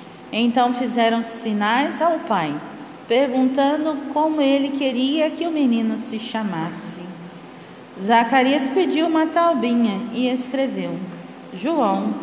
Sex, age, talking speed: female, 40-59, 105 wpm